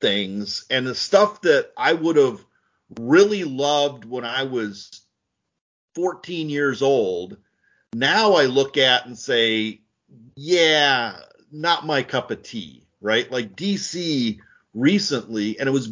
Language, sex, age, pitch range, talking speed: English, male, 40-59, 115-165 Hz, 130 wpm